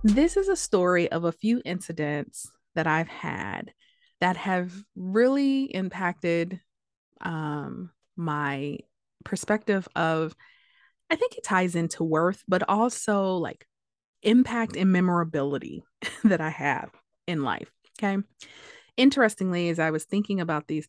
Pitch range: 165-220 Hz